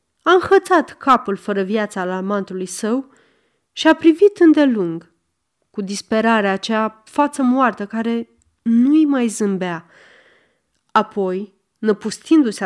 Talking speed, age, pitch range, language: 110 wpm, 30-49, 190-275 Hz, Romanian